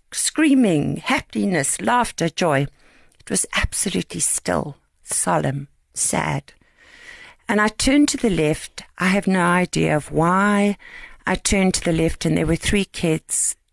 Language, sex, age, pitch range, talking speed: English, female, 60-79, 150-215 Hz, 140 wpm